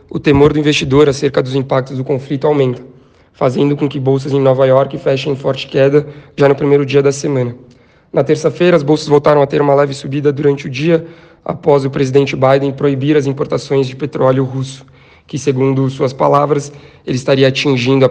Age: 20-39